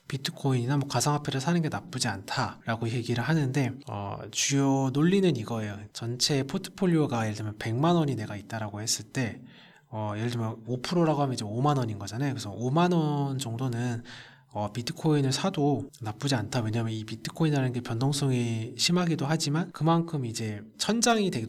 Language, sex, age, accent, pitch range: Korean, male, 20-39, native, 110-145 Hz